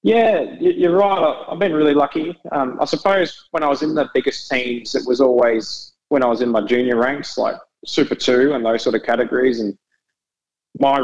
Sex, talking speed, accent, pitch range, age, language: male, 200 wpm, Australian, 115-130 Hz, 20-39, English